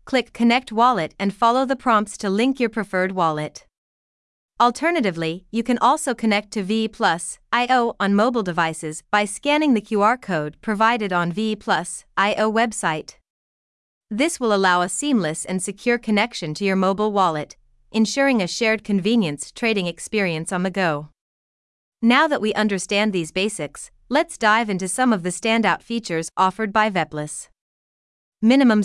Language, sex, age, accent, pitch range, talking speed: English, female, 30-49, American, 175-230 Hz, 150 wpm